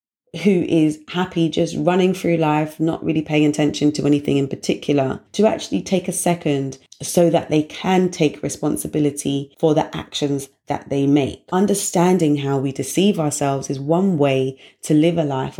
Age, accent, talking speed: 30-49, British, 170 wpm